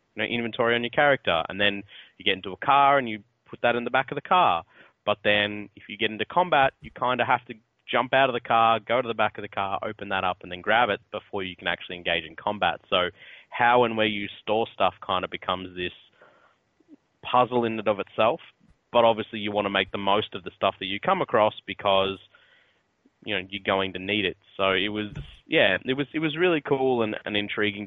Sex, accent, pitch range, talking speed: male, Australian, 95-115 Hz, 240 wpm